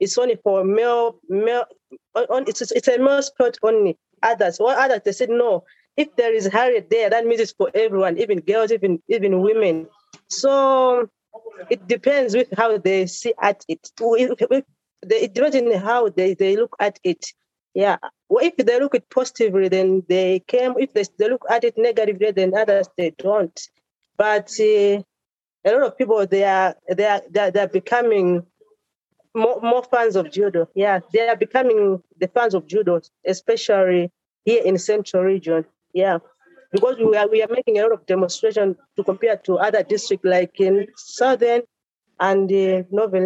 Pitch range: 190-245 Hz